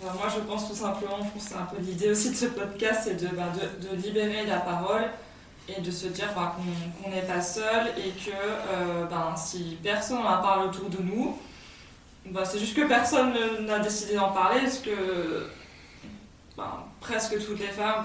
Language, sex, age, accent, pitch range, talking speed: French, female, 20-39, French, 190-220 Hz, 200 wpm